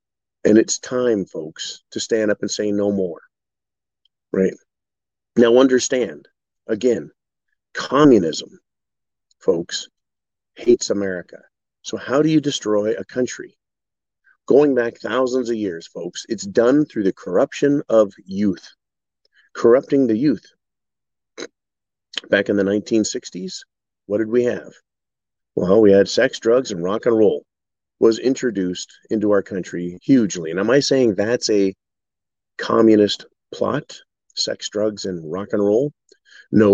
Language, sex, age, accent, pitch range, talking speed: English, male, 50-69, American, 100-125 Hz, 130 wpm